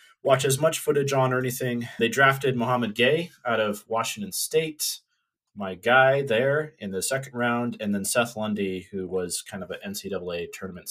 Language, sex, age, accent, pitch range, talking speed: English, male, 30-49, American, 100-130 Hz, 180 wpm